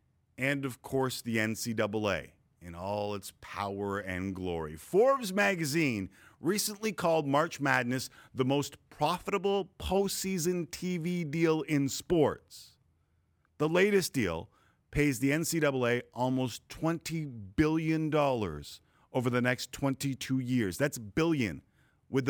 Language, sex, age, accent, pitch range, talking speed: English, male, 50-69, American, 110-165 Hz, 115 wpm